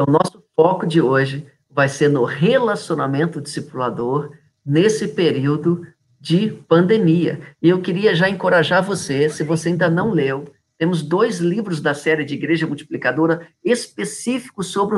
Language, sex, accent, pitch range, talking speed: Portuguese, male, Brazilian, 150-185 Hz, 145 wpm